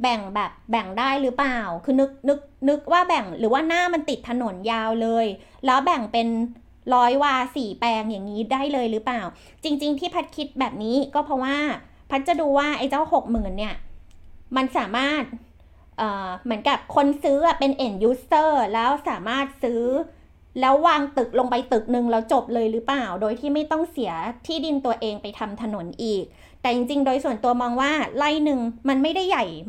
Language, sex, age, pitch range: Thai, female, 20-39, 230-290 Hz